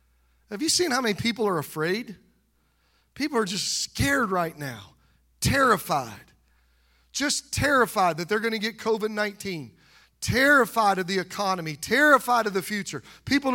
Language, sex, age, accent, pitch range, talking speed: English, male, 40-59, American, 175-255 Hz, 140 wpm